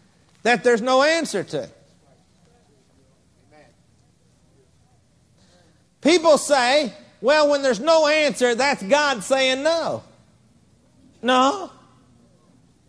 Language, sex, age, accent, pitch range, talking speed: English, male, 50-69, American, 240-305 Hz, 80 wpm